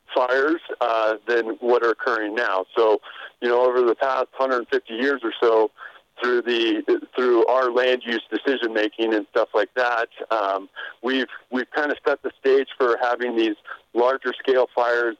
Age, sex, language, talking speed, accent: 40-59, male, English, 170 wpm, American